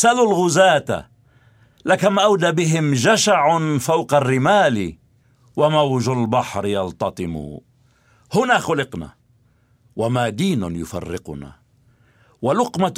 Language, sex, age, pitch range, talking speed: Arabic, male, 50-69, 120-190 Hz, 80 wpm